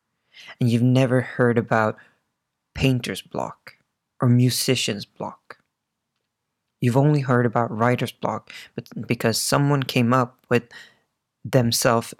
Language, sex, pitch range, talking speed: English, male, 115-130 Hz, 115 wpm